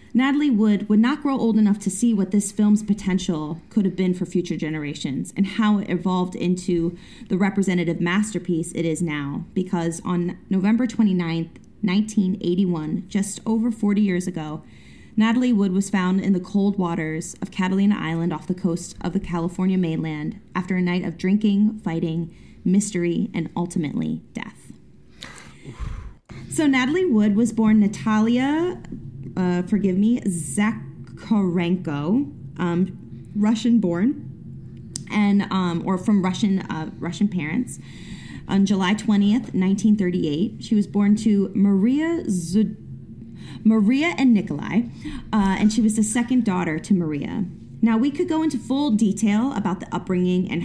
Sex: female